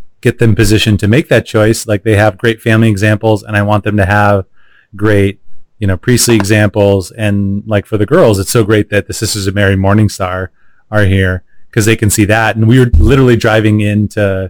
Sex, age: male, 30-49